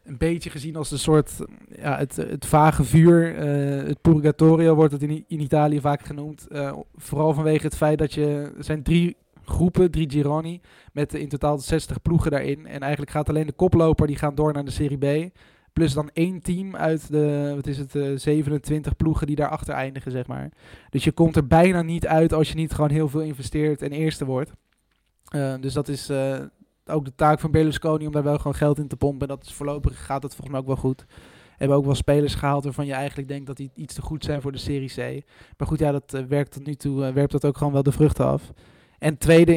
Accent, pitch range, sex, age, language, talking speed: Dutch, 140-155 Hz, male, 20-39, English, 230 wpm